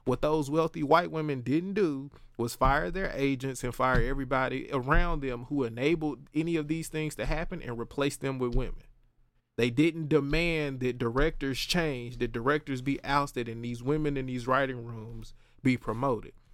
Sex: male